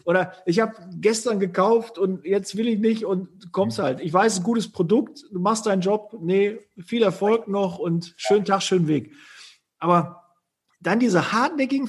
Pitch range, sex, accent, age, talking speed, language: 180-225 Hz, male, German, 40-59, 175 wpm, German